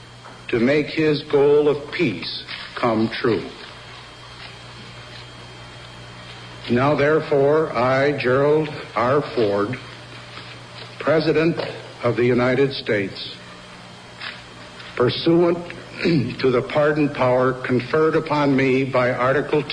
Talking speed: 90 wpm